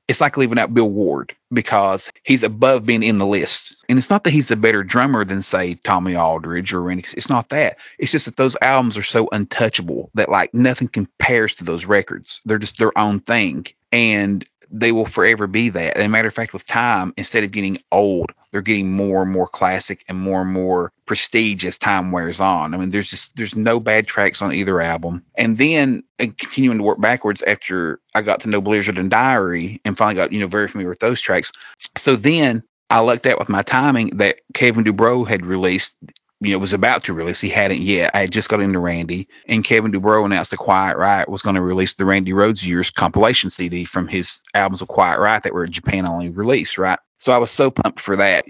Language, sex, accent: English, male, American